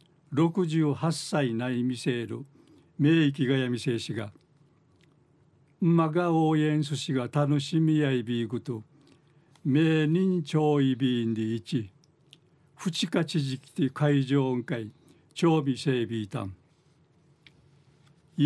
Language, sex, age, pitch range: Japanese, male, 60-79, 135-160 Hz